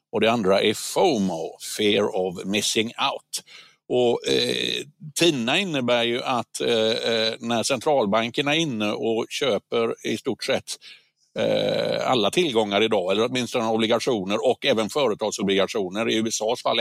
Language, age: Swedish, 60-79